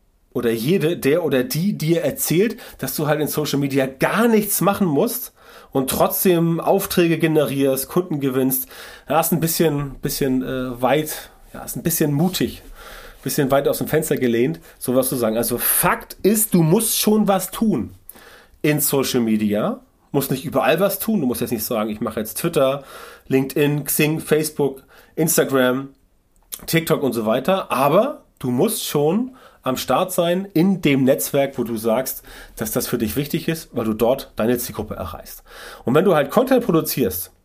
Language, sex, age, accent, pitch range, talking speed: German, male, 30-49, German, 130-180 Hz, 175 wpm